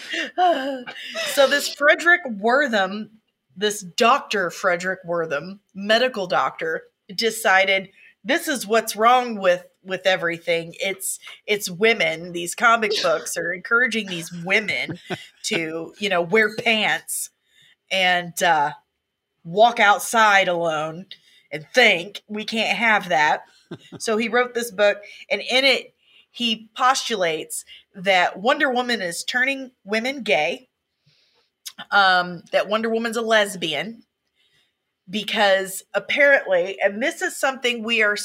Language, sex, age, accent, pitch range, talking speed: English, female, 30-49, American, 185-245 Hz, 120 wpm